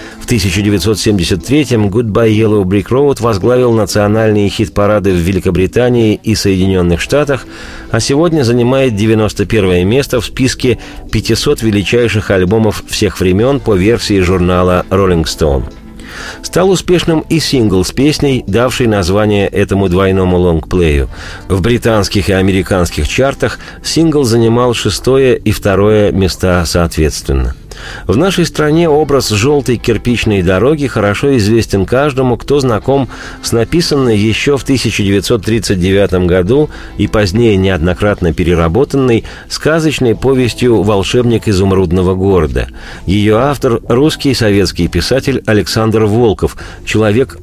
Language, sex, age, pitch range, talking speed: Russian, male, 40-59, 95-120 Hz, 115 wpm